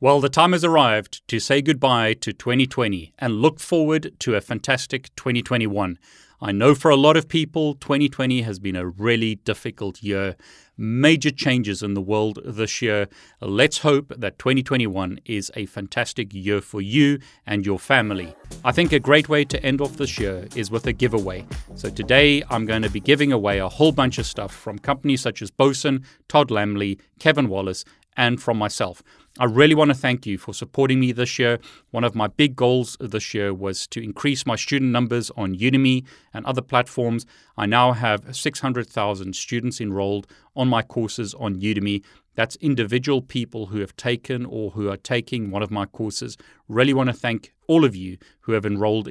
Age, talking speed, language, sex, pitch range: 30-49, 185 wpm, English, male, 105-135 Hz